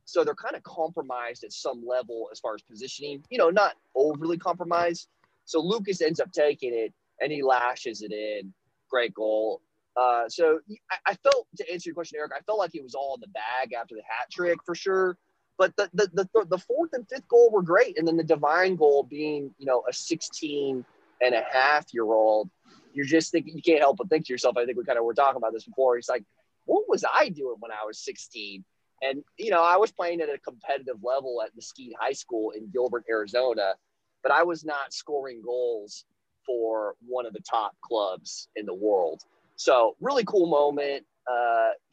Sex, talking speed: male, 205 wpm